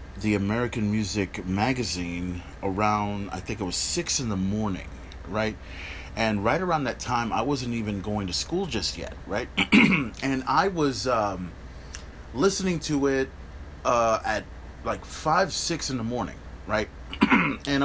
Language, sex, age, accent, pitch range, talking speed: English, male, 30-49, American, 90-135 Hz, 150 wpm